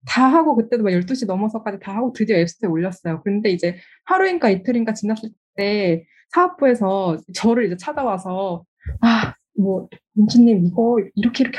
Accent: native